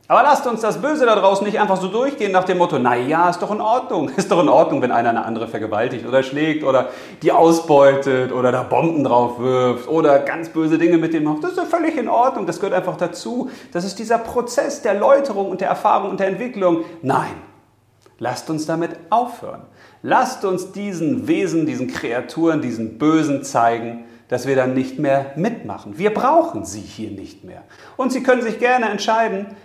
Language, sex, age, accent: German, male, 40-59, German